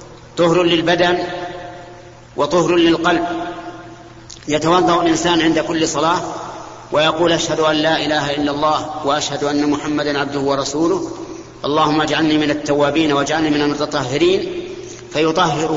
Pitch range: 150-180 Hz